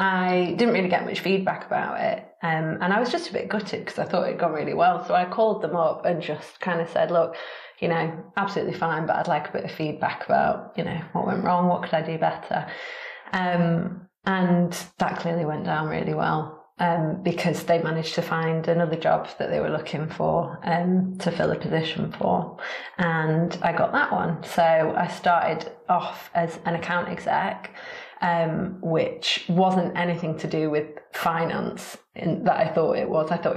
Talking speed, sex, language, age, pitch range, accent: 200 wpm, female, English, 30-49, 160-180 Hz, British